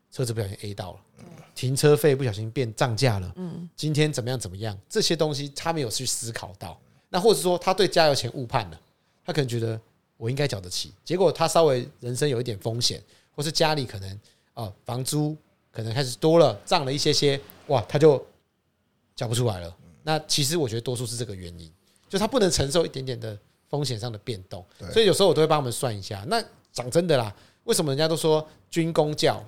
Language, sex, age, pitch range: Chinese, male, 30-49, 110-160 Hz